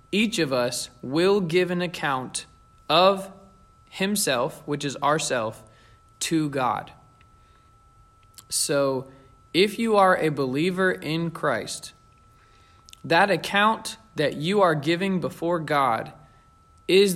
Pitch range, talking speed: 120-175 Hz, 110 wpm